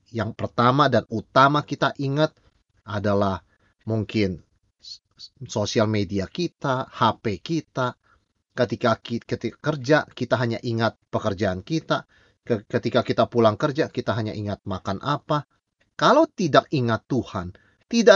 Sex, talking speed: male, 115 wpm